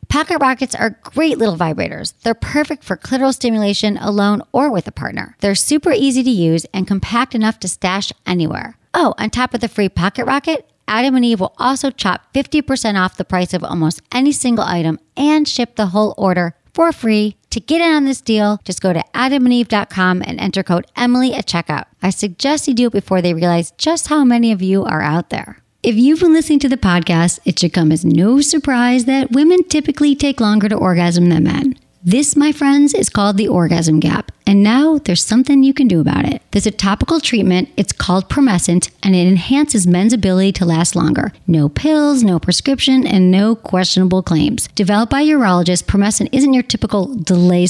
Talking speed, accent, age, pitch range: 200 wpm, American, 40-59, 185-265 Hz